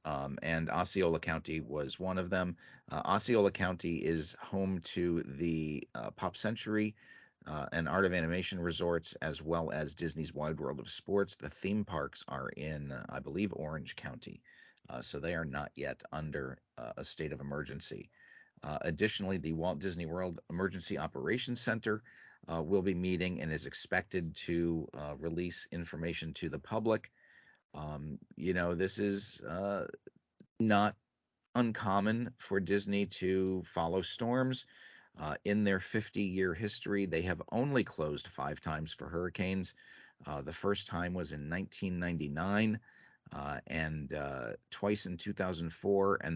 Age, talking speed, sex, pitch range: 40-59, 150 wpm, male, 80-100 Hz